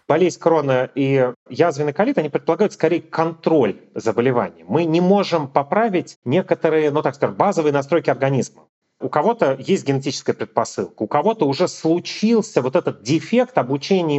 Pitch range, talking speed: 145-200 Hz, 145 wpm